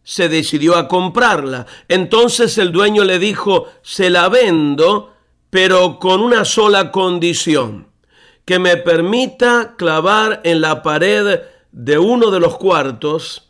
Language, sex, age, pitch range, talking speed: Spanish, male, 50-69, 160-210 Hz, 130 wpm